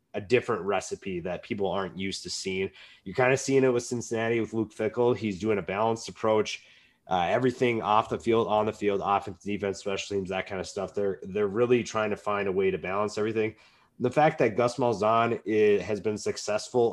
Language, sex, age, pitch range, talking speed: English, male, 30-49, 100-115 Hz, 215 wpm